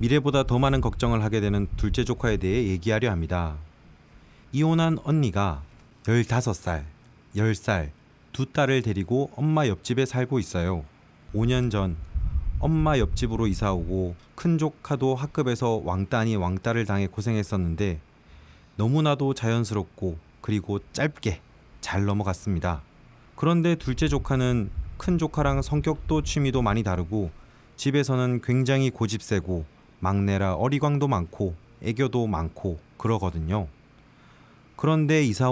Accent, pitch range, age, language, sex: native, 95-135 Hz, 30-49, Korean, male